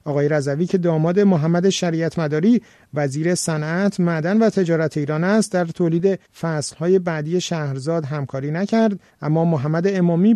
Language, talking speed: Persian, 140 wpm